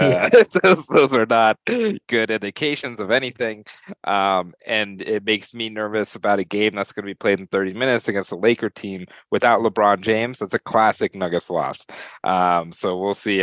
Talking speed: 190 wpm